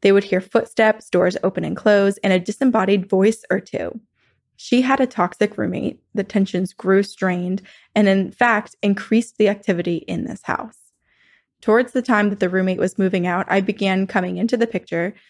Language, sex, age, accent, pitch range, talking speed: English, female, 20-39, American, 190-230 Hz, 185 wpm